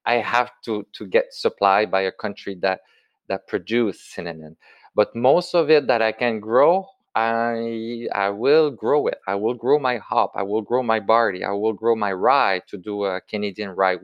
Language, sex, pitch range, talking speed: English, male, 100-150 Hz, 195 wpm